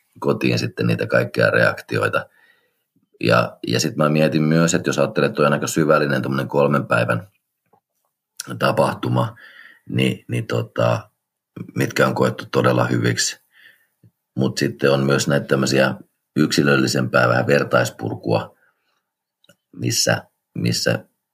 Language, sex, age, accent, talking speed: Finnish, male, 40-59, native, 110 wpm